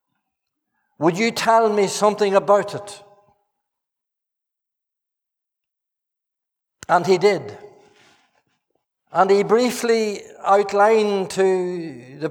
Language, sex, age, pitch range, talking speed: English, male, 60-79, 180-210 Hz, 80 wpm